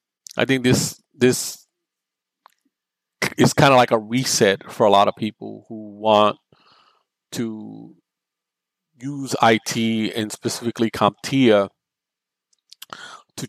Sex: male